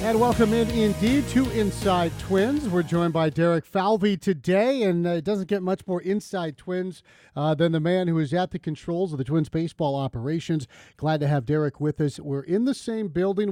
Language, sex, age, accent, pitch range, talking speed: English, male, 40-59, American, 150-190 Hz, 210 wpm